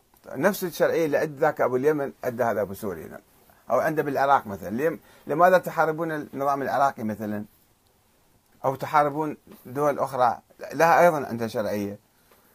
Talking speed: 125 wpm